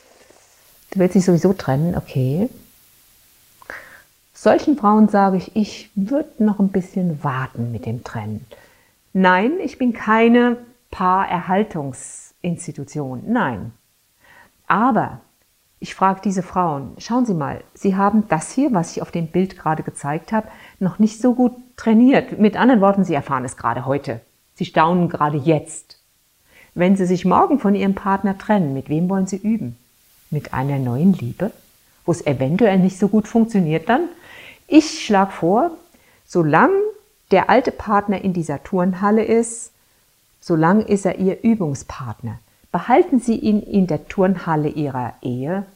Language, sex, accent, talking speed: German, female, German, 145 wpm